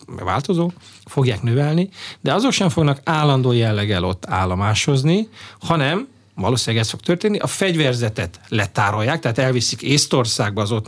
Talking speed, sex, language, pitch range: 130 wpm, male, Hungarian, 110-150 Hz